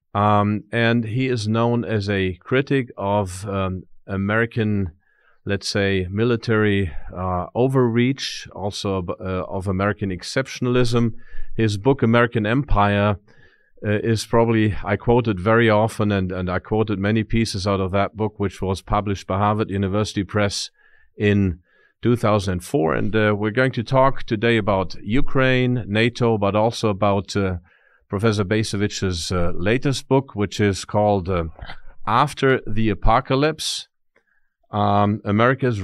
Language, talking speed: German, 130 wpm